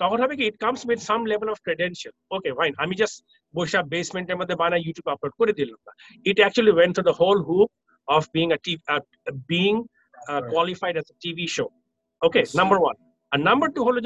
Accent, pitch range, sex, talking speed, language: Indian, 170-225 Hz, male, 180 wpm, English